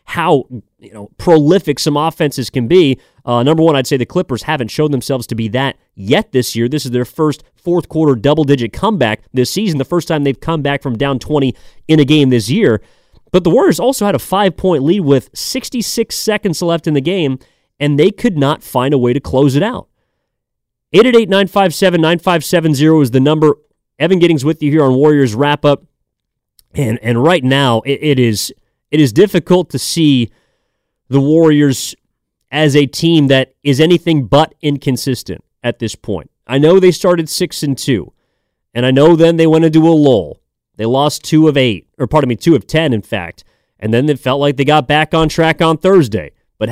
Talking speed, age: 195 wpm, 30-49